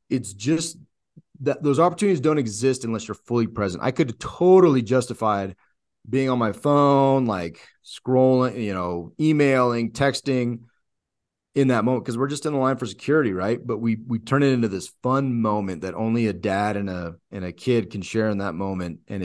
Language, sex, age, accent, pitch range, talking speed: English, male, 30-49, American, 100-130 Hz, 195 wpm